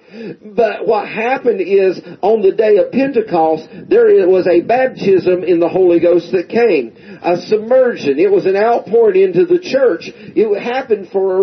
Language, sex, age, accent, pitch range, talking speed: English, male, 40-59, American, 180-280 Hz, 170 wpm